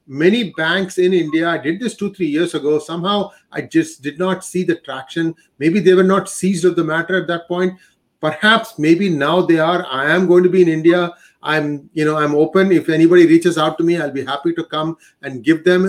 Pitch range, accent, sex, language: 155-195 Hz, Indian, male, English